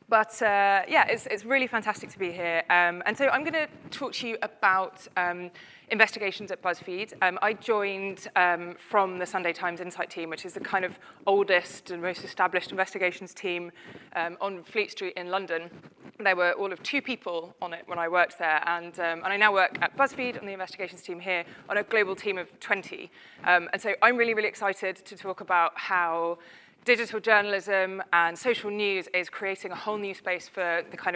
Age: 20-39